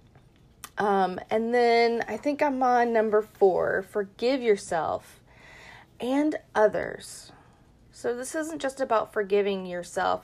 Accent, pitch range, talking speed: American, 175-230 Hz, 115 wpm